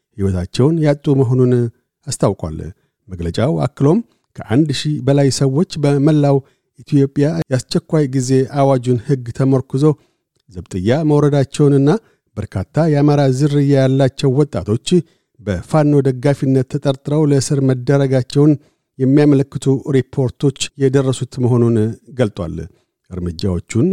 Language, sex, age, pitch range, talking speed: Amharic, male, 50-69, 125-145 Hz, 90 wpm